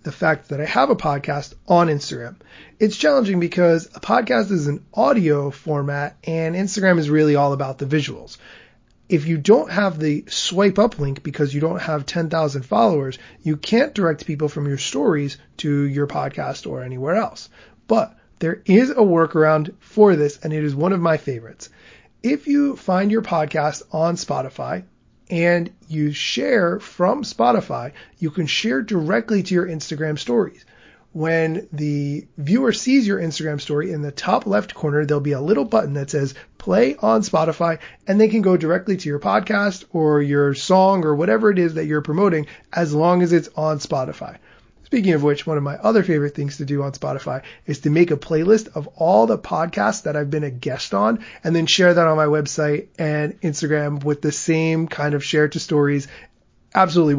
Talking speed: 190 wpm